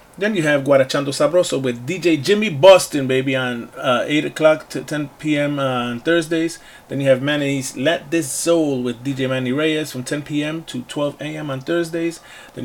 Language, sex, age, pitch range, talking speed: English, male, 30-49, 130-160 Hz, 185 wpm